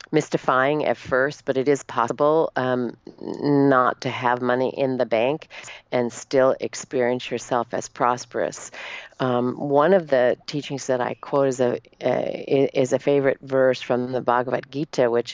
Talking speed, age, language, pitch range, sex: 160 wpm, 40-59, English, 125-140 Hz, female